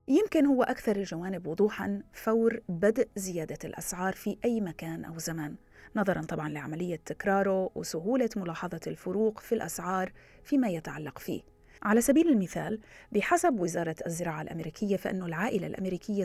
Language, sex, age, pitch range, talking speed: Arabic, female, 30-49, 170-230 Hz, 135 wpm